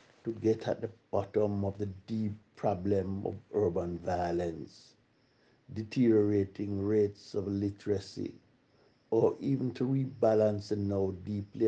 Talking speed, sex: 120 wpm, male